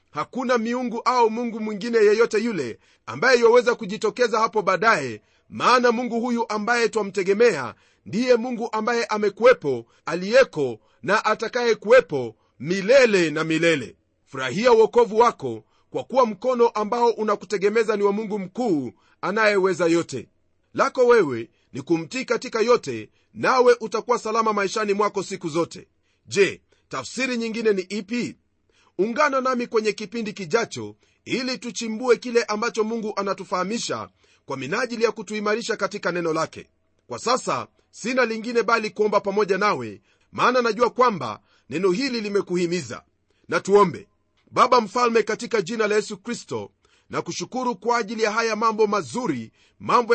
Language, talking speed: Swahili, 130 wpm